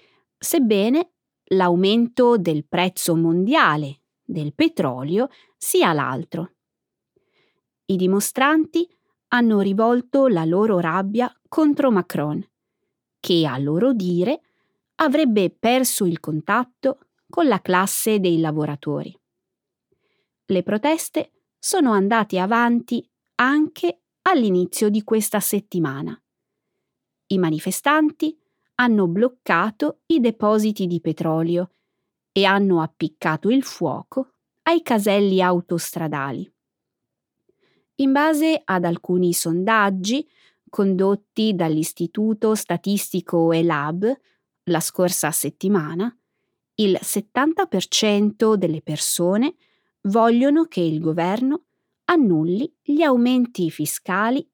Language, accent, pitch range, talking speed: Italian, native, 175-265 Hz, 90 wpm